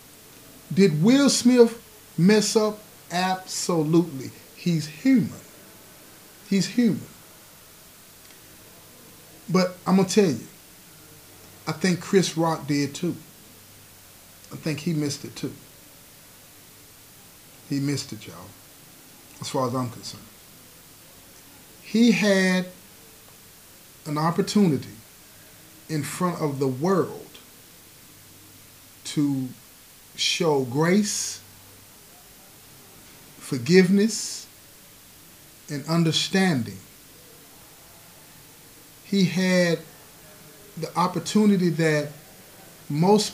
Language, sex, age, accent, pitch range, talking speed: English, male, 40-59, American, 145-190 Hz, 80 wpm